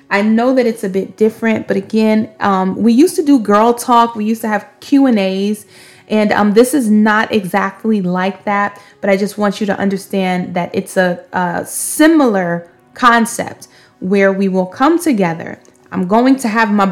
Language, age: English, 20-39